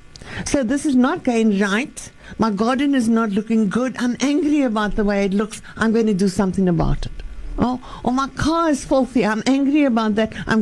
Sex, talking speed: female, 210 wpm